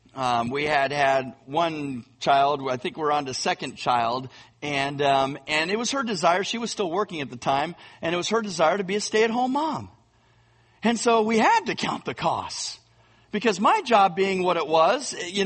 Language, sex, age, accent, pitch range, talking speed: English, male, 40-59, American, 135-215 Hz, 205 wpm